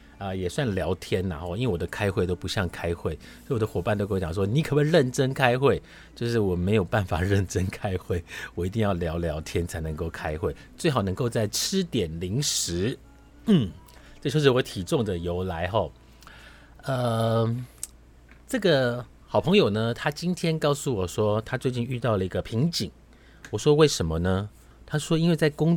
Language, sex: Chinese, male